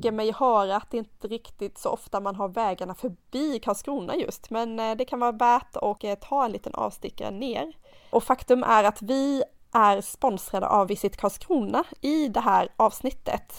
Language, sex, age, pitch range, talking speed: Swedish, female, 20-39, 200-245 Hz, 170 wpm